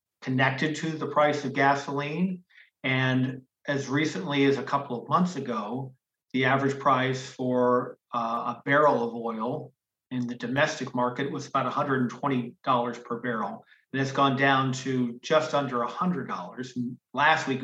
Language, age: English, 50-69